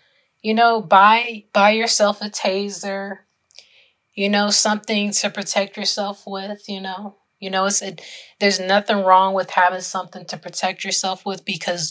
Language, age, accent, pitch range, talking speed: English, 20-39, American, 175-200 Hz, 155 wpm